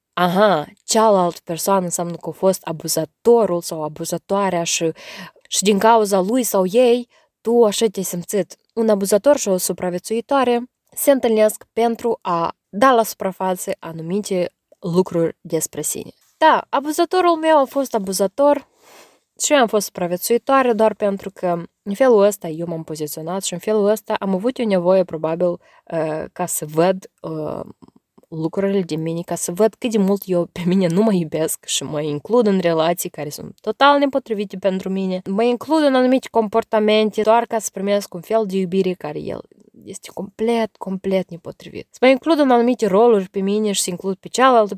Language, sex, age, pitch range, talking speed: Romanian, female, 20-39, 175-230 Hz, 170 wpm